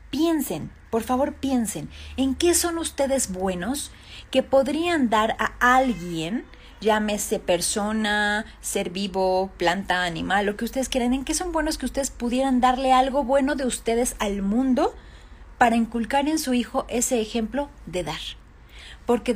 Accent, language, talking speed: Mexican, Spanish, 150 wpm